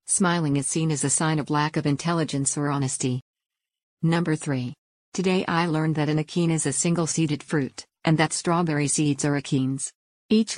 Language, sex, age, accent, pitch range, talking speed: English, female, 50-69, American, 145-170 Hz, 175 wpm